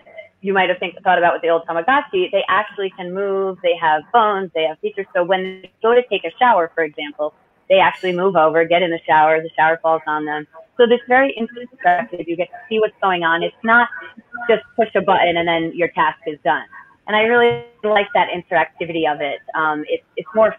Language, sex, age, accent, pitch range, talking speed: English, female, 30-49, American, 165-215 Hz, 220 wpm